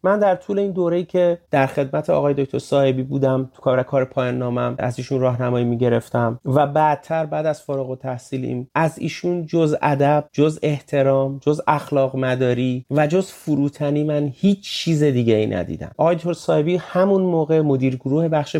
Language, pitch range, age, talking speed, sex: Persian, 125-150 Hz, 30-49, 175 wpm, male